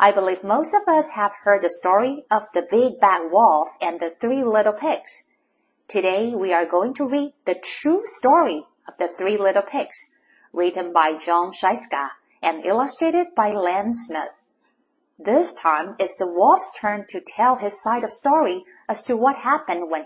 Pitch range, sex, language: 185-290 Hz, female, Chinese